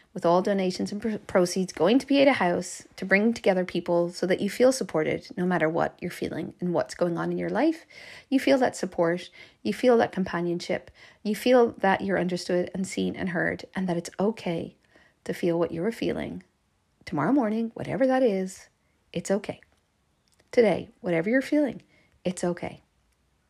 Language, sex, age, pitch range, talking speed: English, female, 40-59, 175-215 Hz, 185 wpm